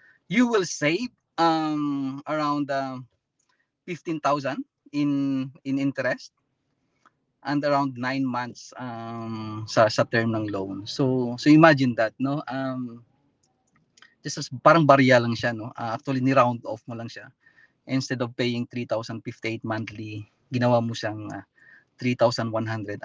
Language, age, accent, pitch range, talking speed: English, 20-39, Filipino, 110-135 Hz, 135 wpm